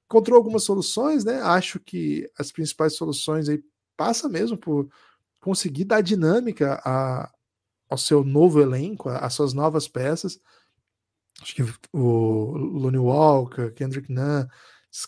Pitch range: 135-170 Hz